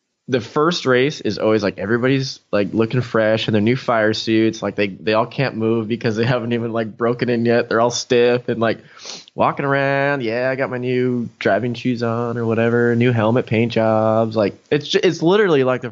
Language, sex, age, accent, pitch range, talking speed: English, male, 20-39, American, 95-120 Hz, 215 wpm